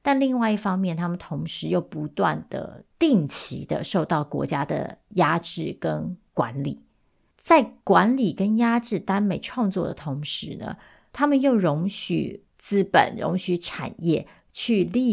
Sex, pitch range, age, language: female, 160-200 Hz, 30-49, Chinese